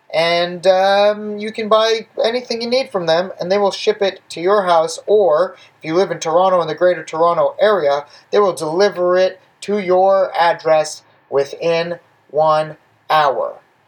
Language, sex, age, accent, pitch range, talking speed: English, male, 30-49, American, 160-215 Hz, 170 wpm